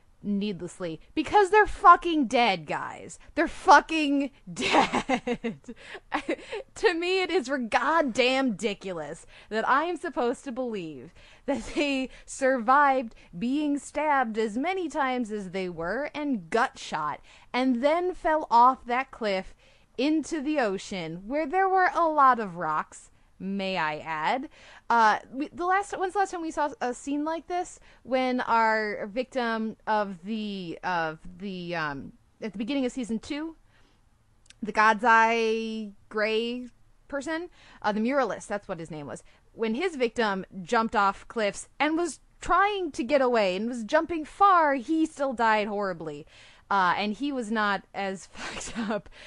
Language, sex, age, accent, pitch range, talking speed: English, female, 20-39, American, 205-295 Hz, 145 wpm